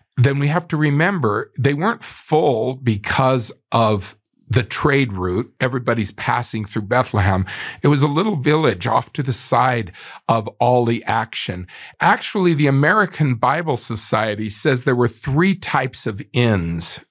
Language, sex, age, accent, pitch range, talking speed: English, male, 50-69, American, 115-145 Hz, 140 wpm